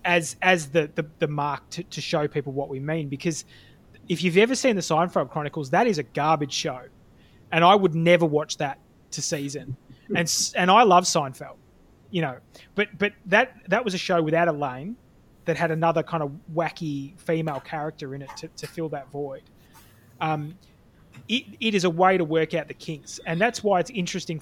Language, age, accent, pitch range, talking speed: English, 20-39, Australian, 150-180 Hz, 200 wpm